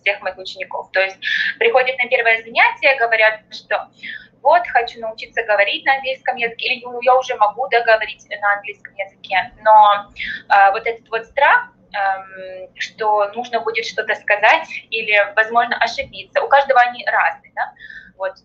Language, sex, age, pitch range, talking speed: Russian, female, 20-39, 195-255 Hz, 155 wpm